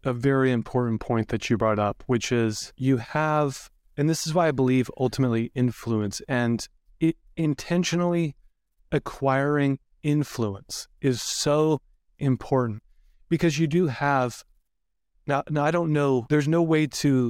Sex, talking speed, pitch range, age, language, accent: male, 140 wpm, 120-150 Hz, 30-49, English, American